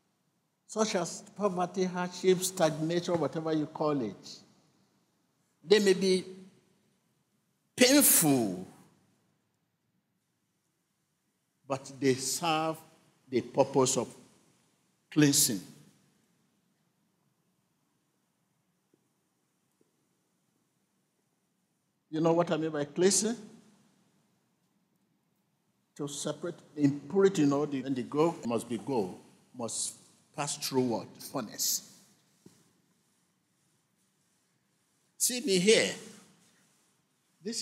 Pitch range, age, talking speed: 150-195 Hz, 50-69, 80 wpm